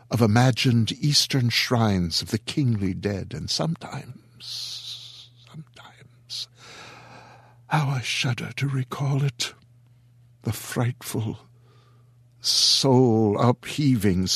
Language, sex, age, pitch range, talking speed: English, male, 60-79, 110-135 Hz, 85 wpm